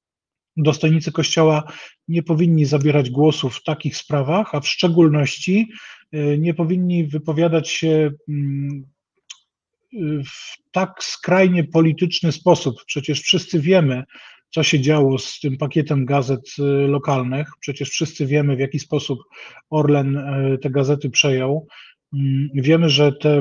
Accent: native